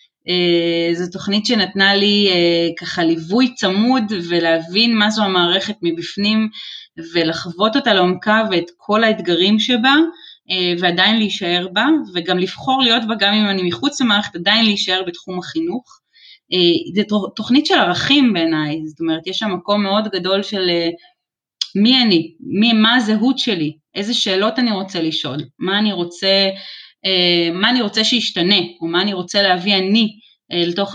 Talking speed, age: 145 wpm, 20-39